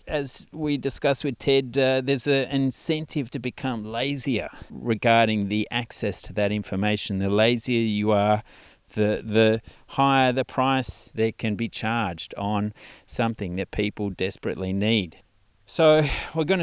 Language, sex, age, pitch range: English, male, 40-59, 105-135 Hz